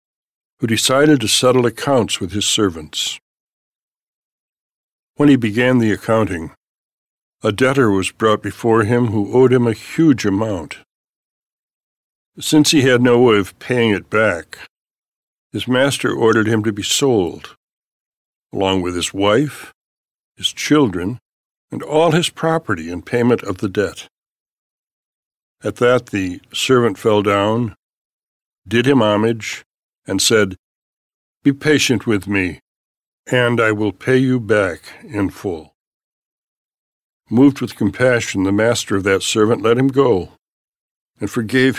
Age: 60-79